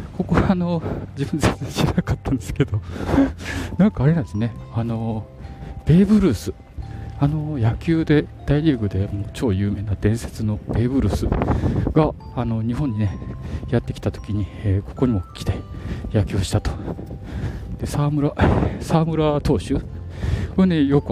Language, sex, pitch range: Japanese, male, 95-130 Hz